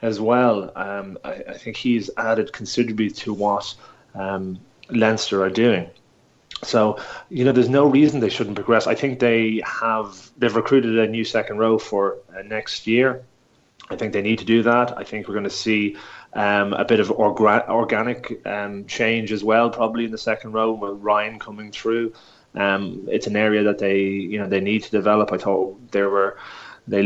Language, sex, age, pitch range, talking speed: English, male, 30-49, 105-120 Hz, 190 wpm